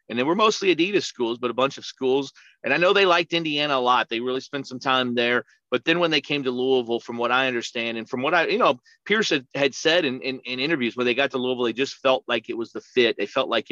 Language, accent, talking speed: English, American, 285 wpm